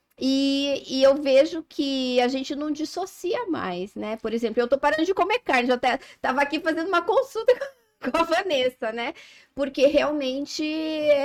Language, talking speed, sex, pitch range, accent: Portuguese, 175 wpm, female, 235-305 Hz, Brazilian